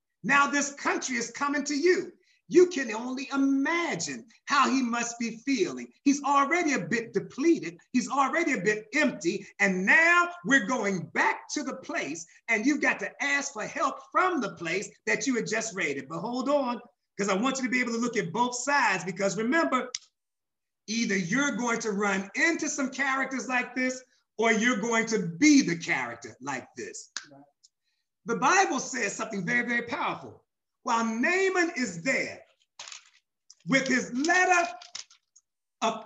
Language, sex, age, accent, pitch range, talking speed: English, male, 30-49, American, 230-300 Hz, 165 wpm